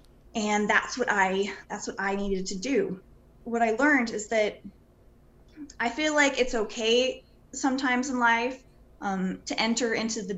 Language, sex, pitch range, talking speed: English, female, 215-260 Hz, 160 wpm